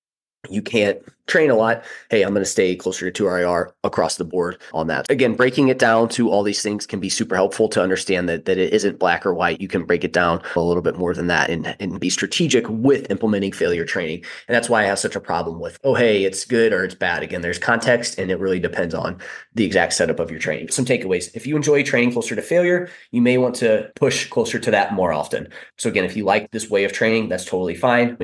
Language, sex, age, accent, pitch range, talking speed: English, male, 20-39, American, 95-120 Hz, 255 wpm